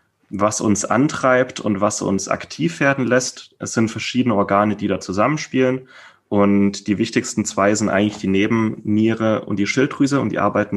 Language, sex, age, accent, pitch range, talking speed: German, male, 30-49, German, 100-115 Hz, 165 wpm